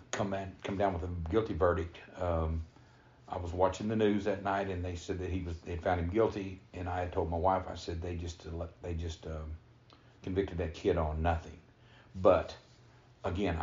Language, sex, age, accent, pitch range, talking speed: English, male, 50-69, American, 85-100 Hz, 205 wpm